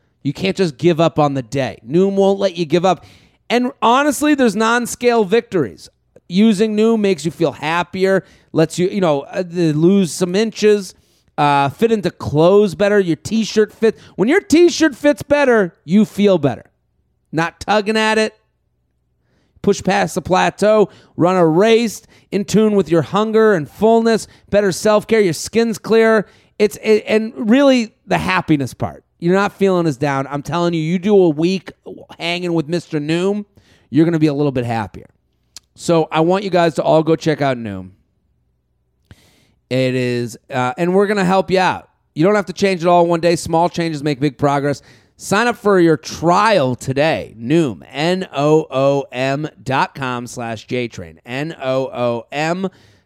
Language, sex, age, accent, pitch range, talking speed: English, male, 30-49, American, 145-205 Hz, 175 wpm